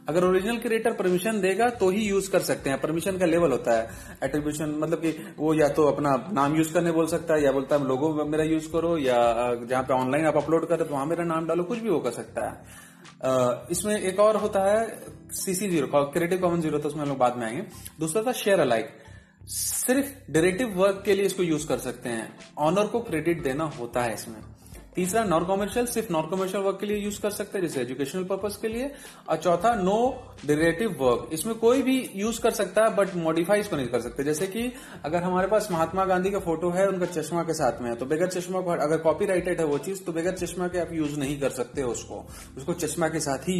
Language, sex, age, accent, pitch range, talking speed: Hindi, male, 30-49, native, 140-195 Hz, 230 wpm